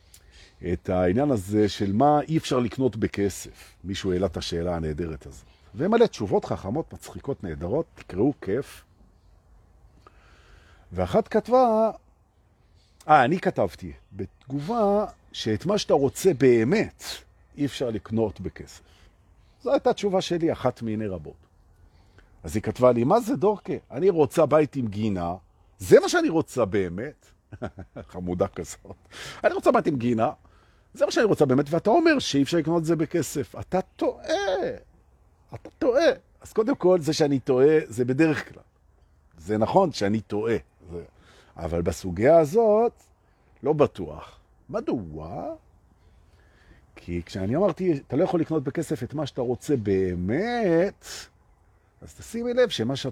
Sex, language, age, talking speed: male, Hebrew, 50-69, 120 wpm